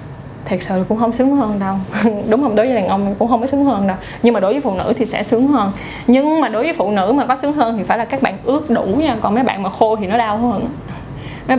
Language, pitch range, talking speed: Vietnamese, 190-245 Hz, 295 wpm